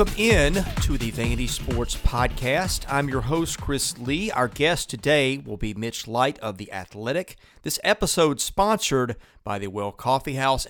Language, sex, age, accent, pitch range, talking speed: English, male, 40-59, American, 115-160 Hz, 170 wpm